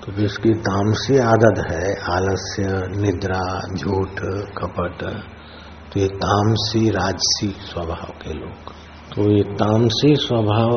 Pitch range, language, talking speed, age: 85-105 Hz, Hindi, 110 wpm, 60-79